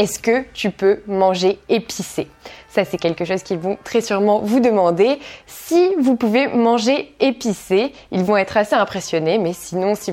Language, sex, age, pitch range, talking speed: French, female, 20-39, 180-235 Hz, 170 wpm